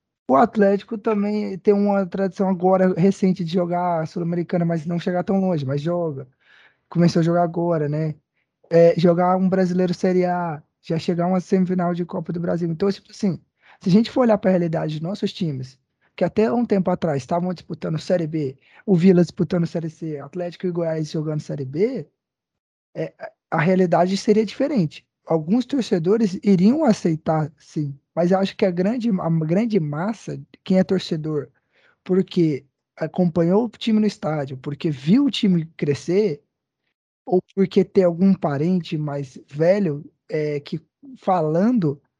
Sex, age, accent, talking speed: male, 20-39, Brazilian, 160 wpm